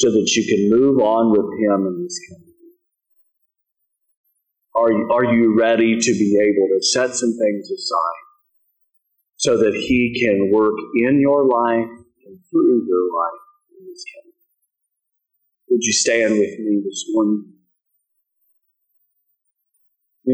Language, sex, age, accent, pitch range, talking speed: English, male, 40-59, American, 110-140 Hz, 140 wpm